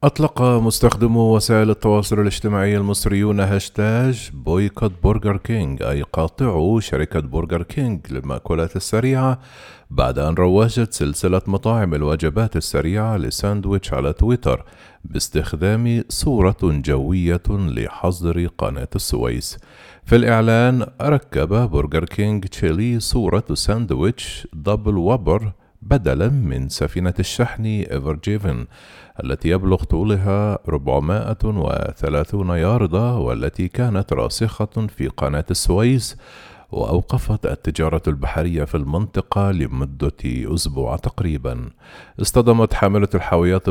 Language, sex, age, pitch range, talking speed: Arabic, male, 40-59, 80-110 Hz, 95 wpm